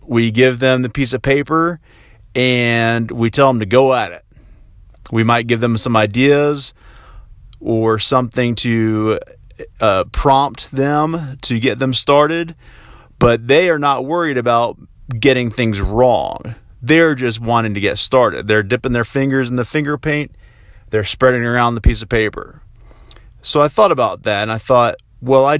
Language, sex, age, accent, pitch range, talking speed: English, male, 30-49, American, 110-135 Hz, 165 wpm